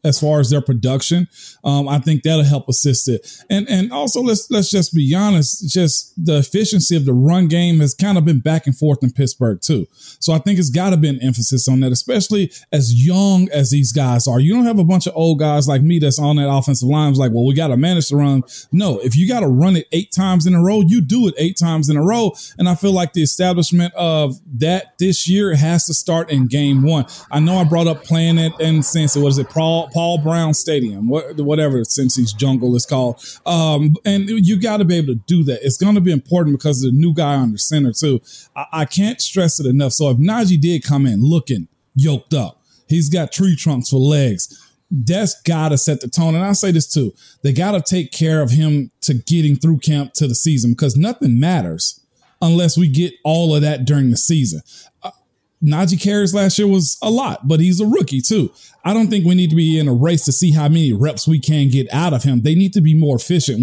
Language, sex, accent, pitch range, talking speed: English, male, American, 140-175 Hz, 245 wpm